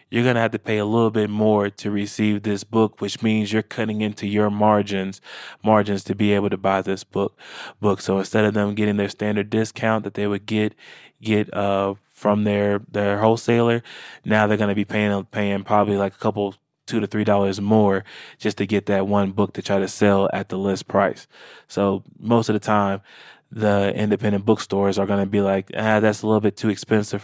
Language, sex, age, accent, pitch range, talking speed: English, male, 20-39, American, 100-105 Hz, 210 wpm